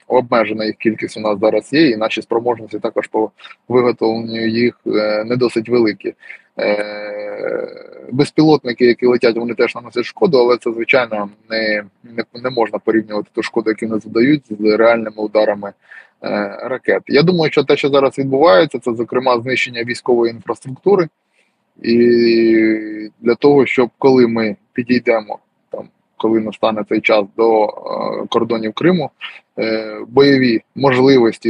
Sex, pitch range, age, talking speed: male, 110-125 Hz, 20-39, 135 wpm